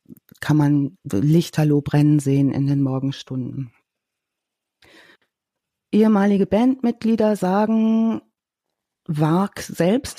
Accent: German